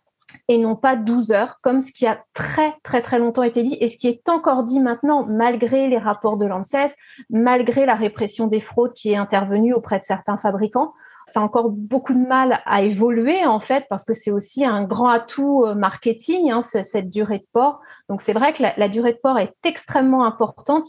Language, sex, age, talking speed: French, female, 30-49, 215 wpm